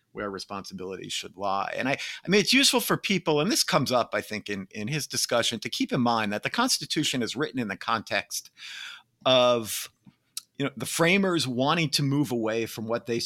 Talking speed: 210 wpm